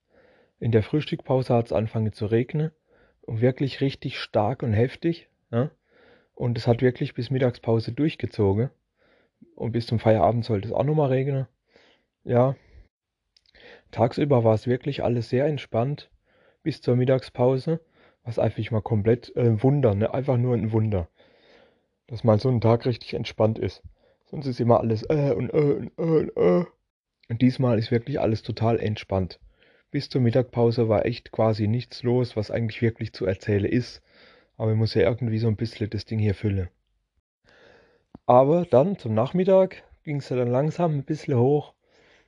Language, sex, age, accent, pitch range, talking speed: German, male, 30-49, German, 110-130 Hz, 170 wpm